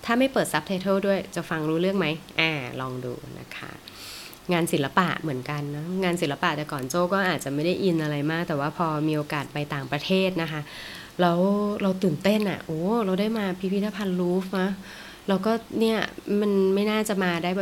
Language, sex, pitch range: Thai, female, 155-195 Hz